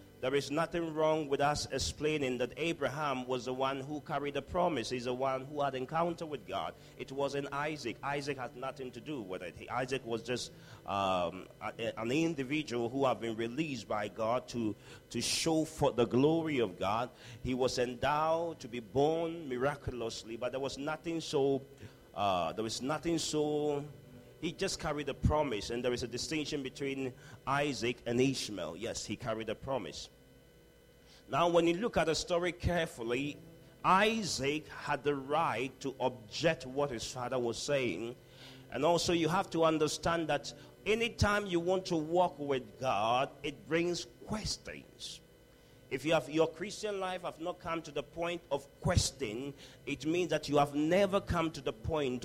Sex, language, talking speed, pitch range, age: male, English, 175 wpm, 125-165 Hz, 40-59